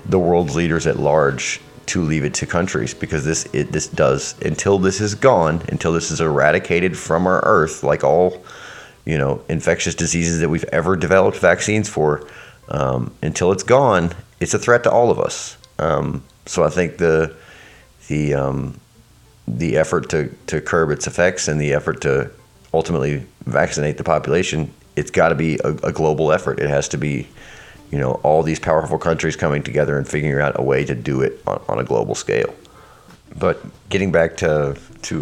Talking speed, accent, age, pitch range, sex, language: 185 wpm, American, 30-49, 75-85 Hz, male, English